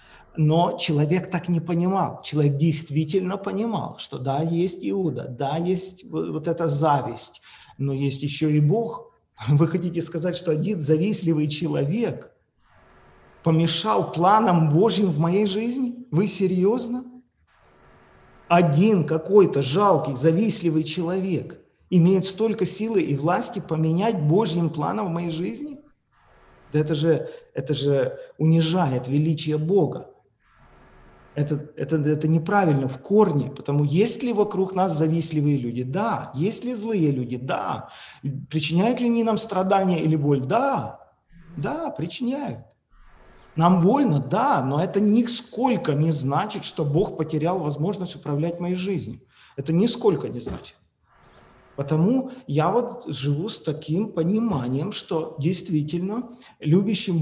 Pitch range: 150-200 Hz